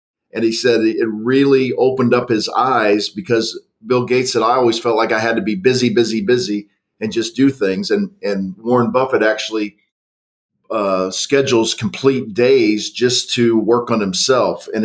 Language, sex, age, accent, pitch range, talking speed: English, male, 40-59, American, 110-130 Hz, 175 wpm